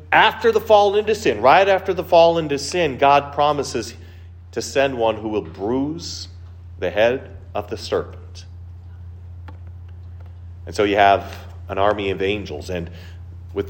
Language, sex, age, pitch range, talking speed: English, male, 40-59, 90-120 Hz, 150 wpm